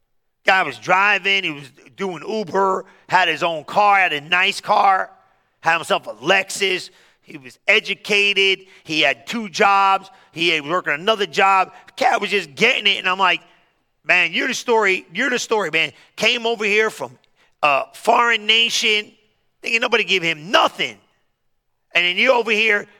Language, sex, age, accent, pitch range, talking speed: English, male, 40-59, American, 175-215 Hz, 170 wpm